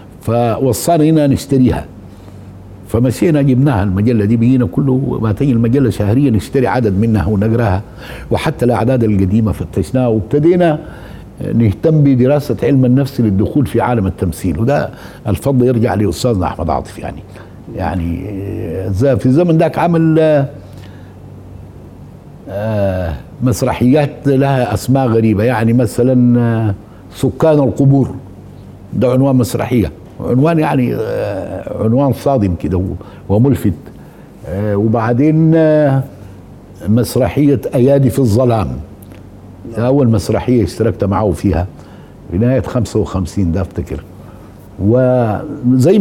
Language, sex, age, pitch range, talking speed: Arabic, male, 60-79, 100-135 Hz, 95 wpm